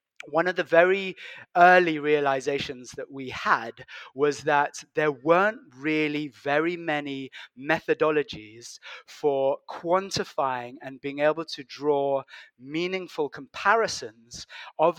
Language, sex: English, male